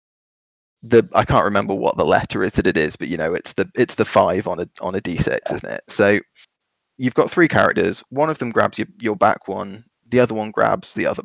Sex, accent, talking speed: male, British, 245 wpm